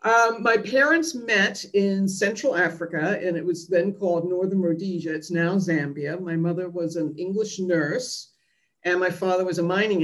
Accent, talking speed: American, 175 wpm